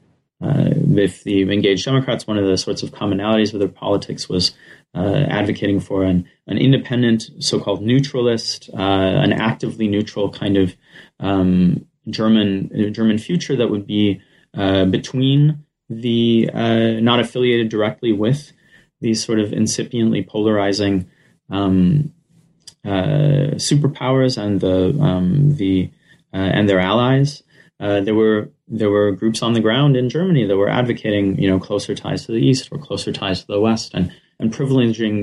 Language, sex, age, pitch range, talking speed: English, male, 30-49, 100-130 Hz, 155 wpm